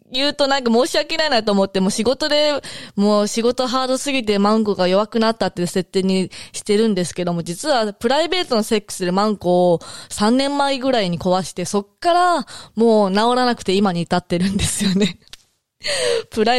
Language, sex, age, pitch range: Japanese, female, 20-39, 185-265 Hz